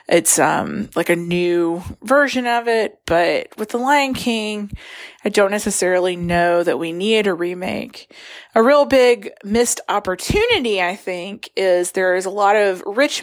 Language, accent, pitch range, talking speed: English, American, 175-225 Hz, 165 wpm